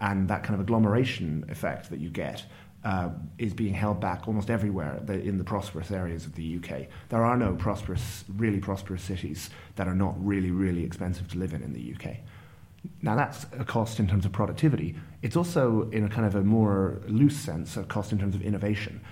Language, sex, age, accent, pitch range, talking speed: English, male, 30-49, British, 90-110 Hz, 205 wpm